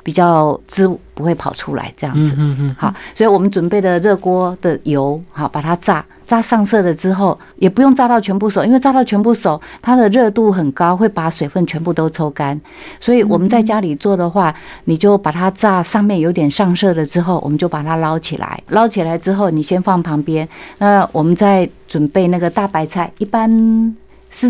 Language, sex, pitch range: Chinese, female, 165-210 Hz